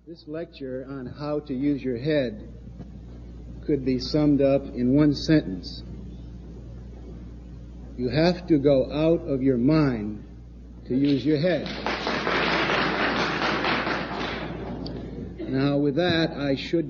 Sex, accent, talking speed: male, American, 115 wpm